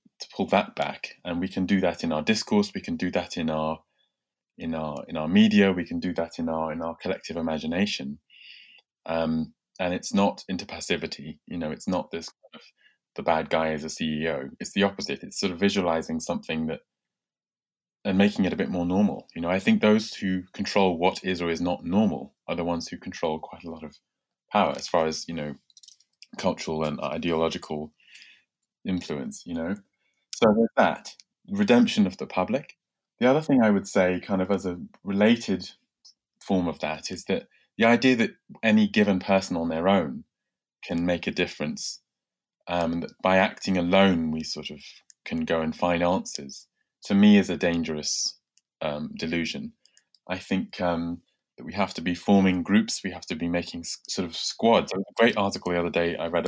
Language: English